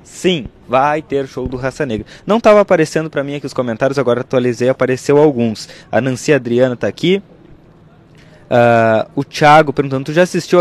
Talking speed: 175 wpm